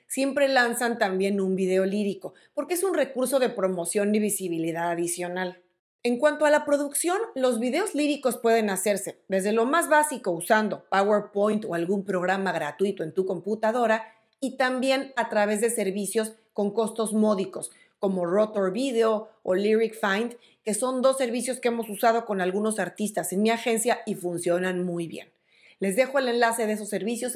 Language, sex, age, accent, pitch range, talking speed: Spanish, female, 40-59, Mexican, 195-255 Hz, 170 wpm